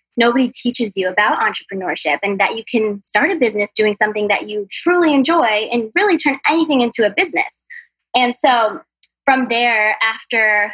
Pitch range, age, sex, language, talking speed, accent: 210-255 Hz, 20-39, female, English, 170 wpm, American